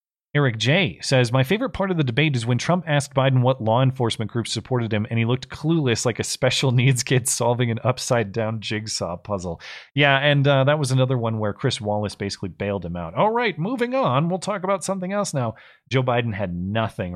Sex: male